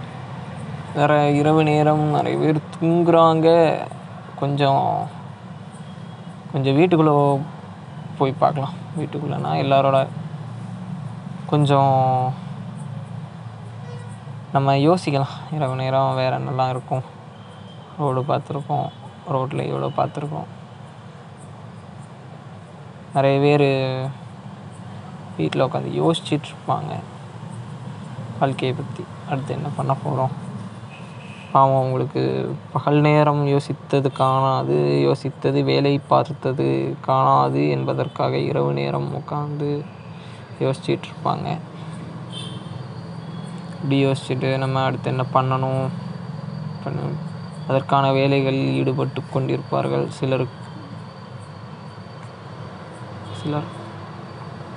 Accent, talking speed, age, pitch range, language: native, 70 wpm, 20-39, 130-155 Hz, Tamil